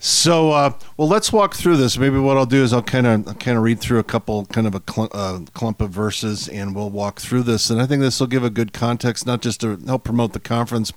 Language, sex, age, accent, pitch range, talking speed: English, male, 50-69, American, 105-120 Hz, 265 wpm